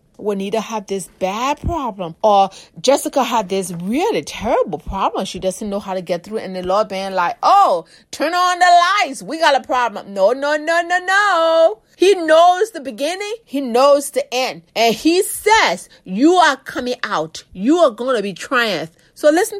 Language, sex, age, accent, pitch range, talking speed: English, female, 30-49, American, 215-335 Hz, 190 wpm